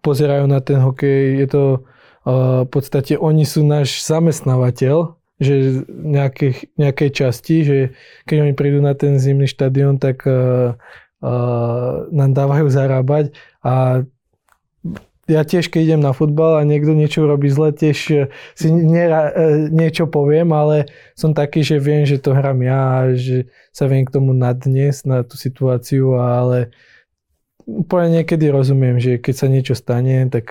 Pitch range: 130-145 Hz